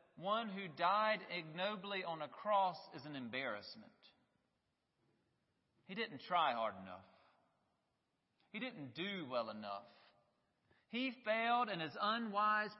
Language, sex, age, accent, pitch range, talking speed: English, male, 40-59, American, 140-195 Hz, 115 wpm